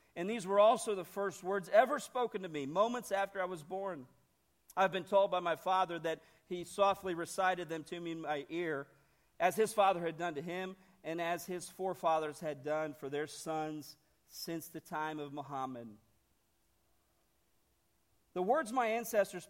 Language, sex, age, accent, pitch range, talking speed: English, male, 50-69, American, 135-180 Hz, 175 wpm